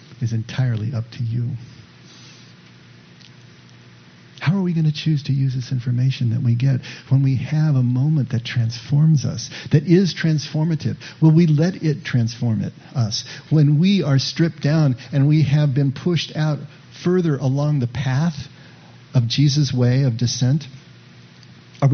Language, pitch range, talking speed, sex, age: English, 125-155 Hz, 155 wpm, male, 50-69